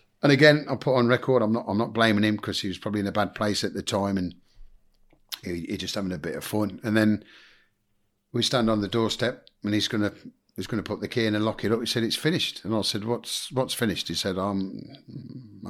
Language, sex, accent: English, male, British